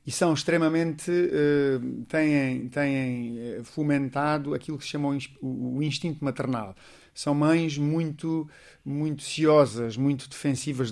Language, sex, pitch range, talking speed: Portuguese, male, 125-145 Hz, 110 wpm